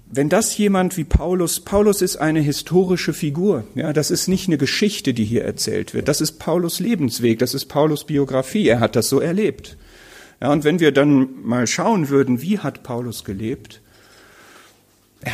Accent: German